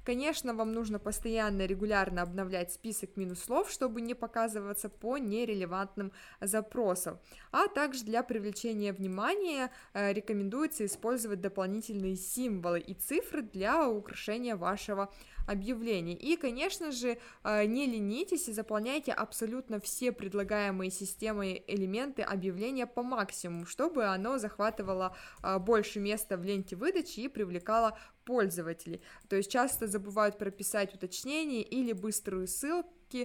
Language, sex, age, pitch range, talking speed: Russian, female, 20-39, 195-240 Hz, 125 wpm